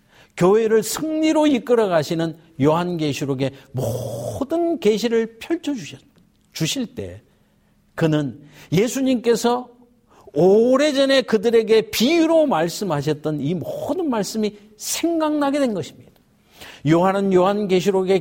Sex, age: male, 60-79